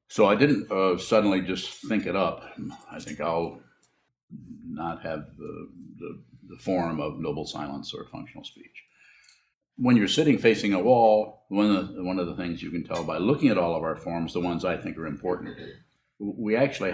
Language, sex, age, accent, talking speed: English, male, 50-69, American, 185 wpm